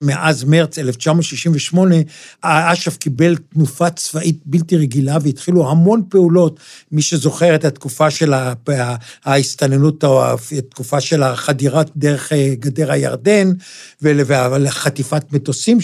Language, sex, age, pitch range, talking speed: Hebrew, male, 60-79, 140-175 Hz, 100 wpm